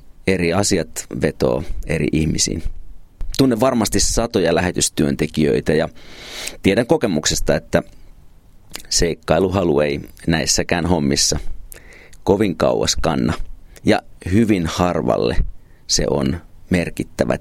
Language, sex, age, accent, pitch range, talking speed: Finnish, male, 40-59, native, 75-95 Hz, 90 wpm